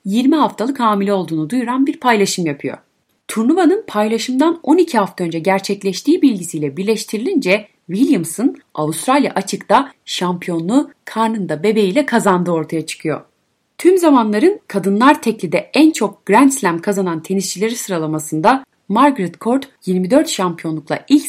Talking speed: 120 wpm